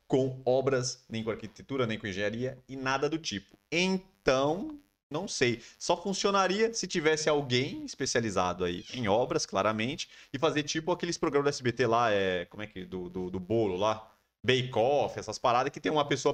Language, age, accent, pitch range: Portuguese, 20-39, Brazilian, 110-160 Hz